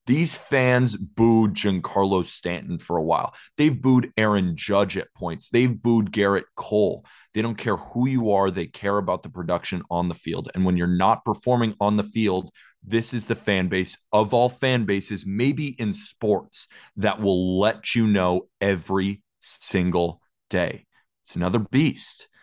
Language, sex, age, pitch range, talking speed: English, male, 30-49, 90-110 Hz, 170 wpm